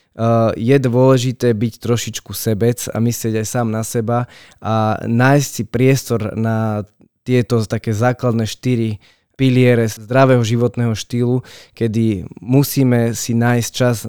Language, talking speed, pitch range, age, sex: Slovak, 125 wpm, 110-125 Hz, 20-39, male